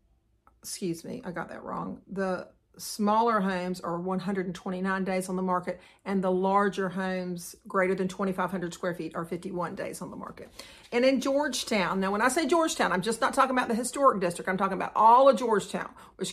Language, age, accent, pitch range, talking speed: English, 50-69, American, 185-210 Hz, 195 wpm